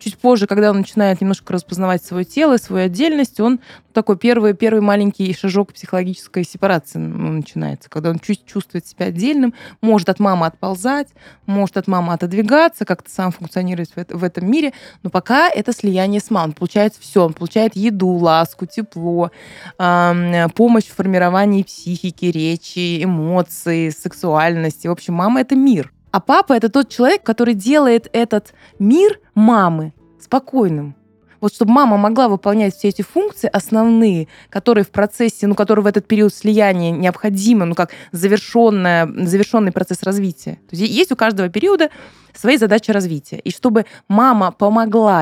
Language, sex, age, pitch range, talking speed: Russian, female, 20-39, 180-225 Hz, 155 wpm